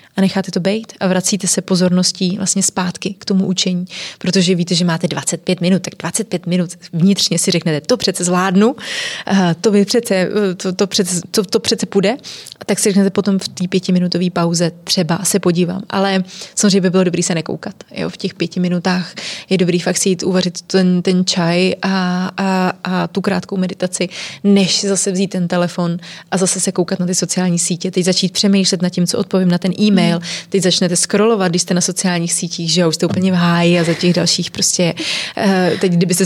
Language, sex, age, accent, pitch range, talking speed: Czech, female, 20-39, native, 180-200 Hz, 200 wpm